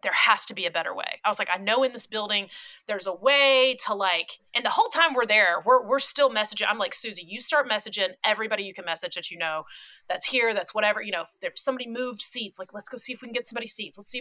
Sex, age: female, 30-49